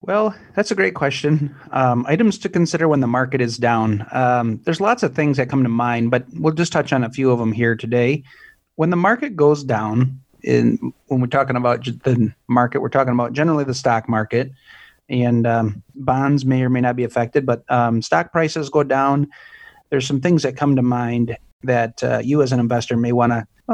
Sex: male